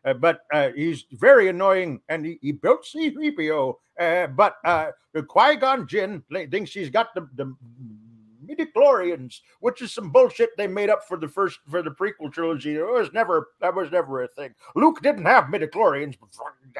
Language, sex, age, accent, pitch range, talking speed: English, male, 50-69, American, 160-230 Hz, 185 wpm